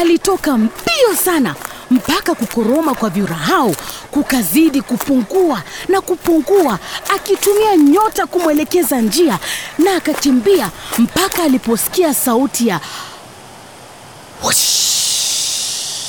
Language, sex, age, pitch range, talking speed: English, female, 30-49, 220-360 Hz, 80 wpm